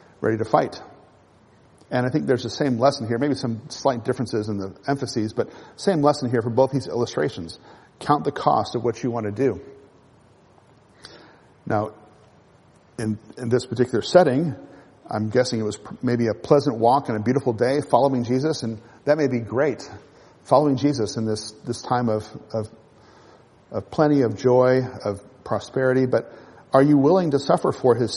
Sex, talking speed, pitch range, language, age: male, 175 wpm, 115-140 Hz, English, 50-69